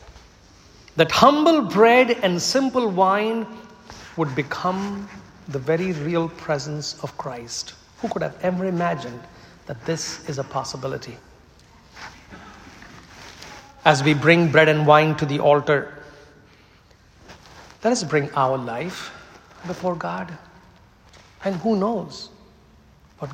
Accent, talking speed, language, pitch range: Indian, 115 wpm, English, 105-165 Hz